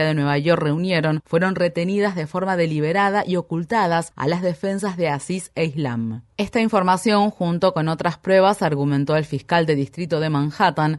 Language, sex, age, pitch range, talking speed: Spanish, female, 30-49, 155-185 Hz, 170 wpm